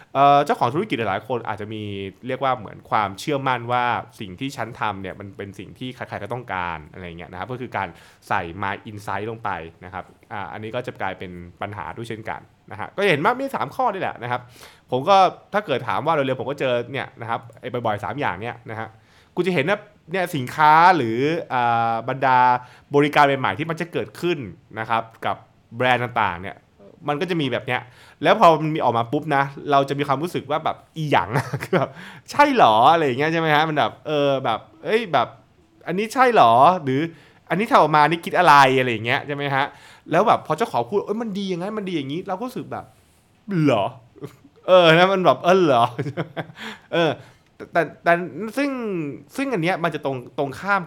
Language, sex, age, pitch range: Thai, male, 20-39, 115-165 Hz